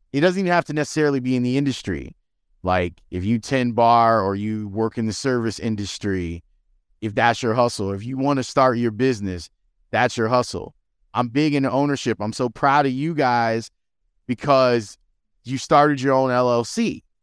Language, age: English, 30-49